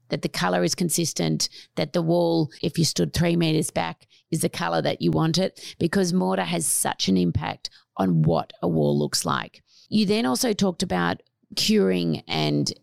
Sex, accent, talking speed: female, Australian, 185 wpm